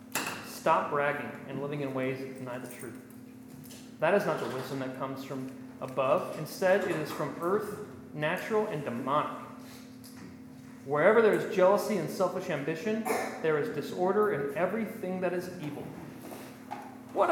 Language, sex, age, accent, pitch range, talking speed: English, male, 40-59, American, 170-245 Hz, 150 wpm